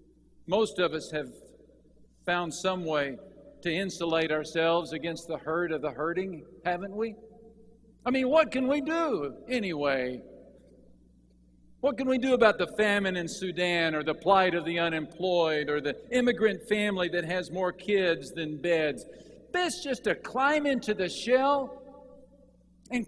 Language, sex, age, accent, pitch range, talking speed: English, male, 50-69, American, 135-205 Hz, 150 wpm